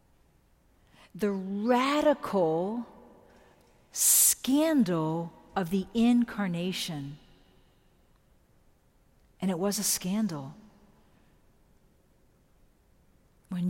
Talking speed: 55 wpm